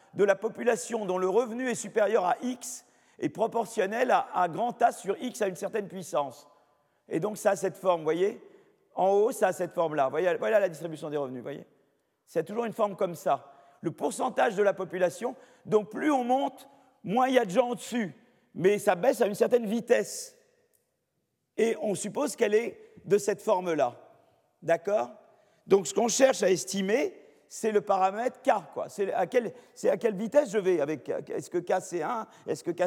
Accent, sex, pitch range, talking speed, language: French, male, 190-245 Hz, 205 wpm, French